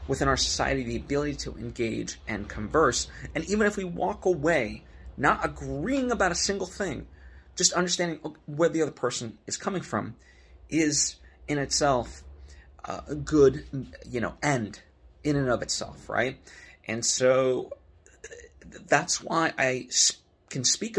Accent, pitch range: American, 115-150 Hz